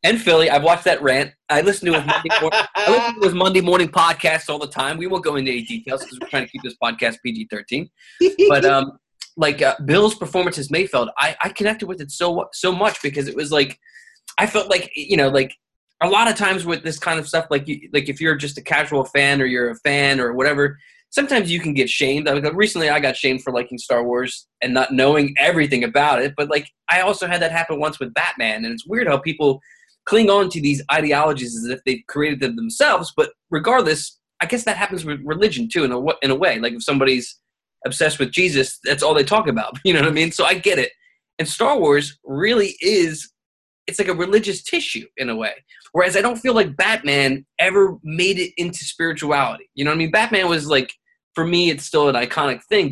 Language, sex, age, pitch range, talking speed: English, male, 20-39, 140-195 Hz, 230 wpm